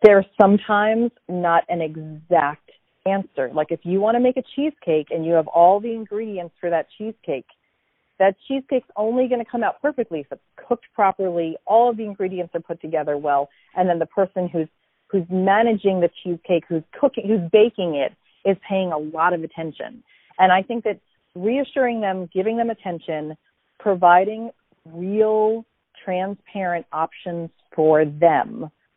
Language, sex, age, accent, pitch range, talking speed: English, female, 40-59, American, 170-220 Hz, 160 wpm